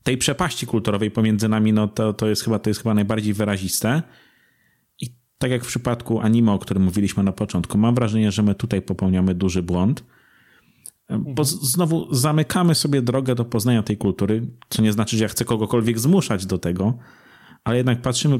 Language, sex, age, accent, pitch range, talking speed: Polish, male, 30-49, native, 105-130 Hz, 185 wpm